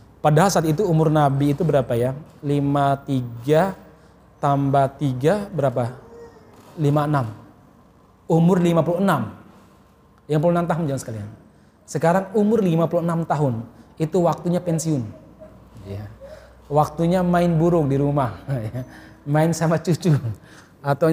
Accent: native